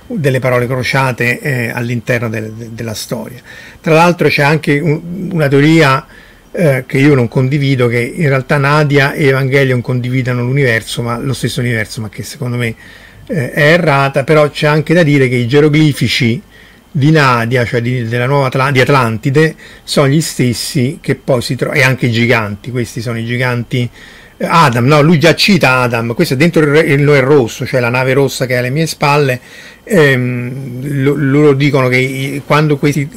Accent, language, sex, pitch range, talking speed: native, Italian, male, 125-150 Hz, 180 wpm